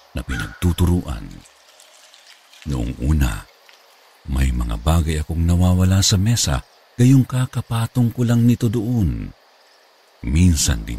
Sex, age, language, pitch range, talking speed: male, 50-69, Filipino, 80-115 Hz, 105 wpm